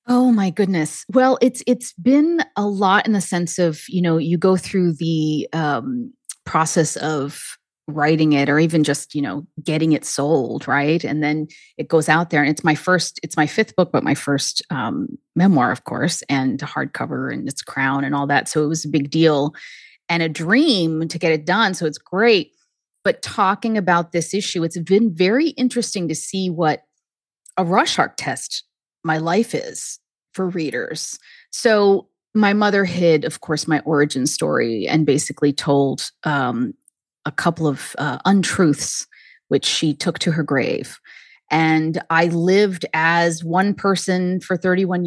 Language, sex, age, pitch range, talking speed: English, female, 30-49, 155-210 Hz, 175 wpm